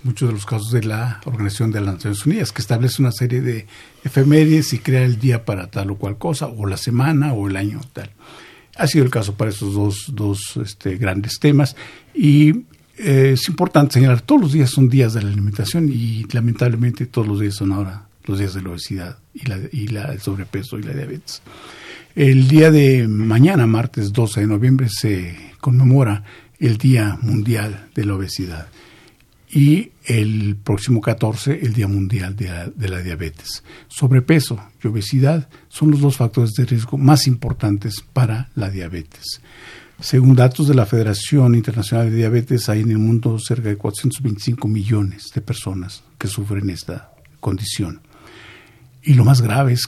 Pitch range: 105-135 Hz